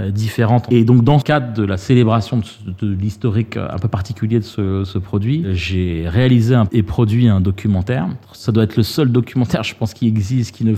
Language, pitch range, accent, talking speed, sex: French, 105-130 Hz, French, 215 wpm, male